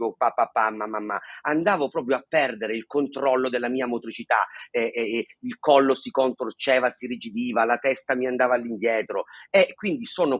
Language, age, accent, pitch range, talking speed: Italian, 40-59, native, 115-155 Hz, 180 wpm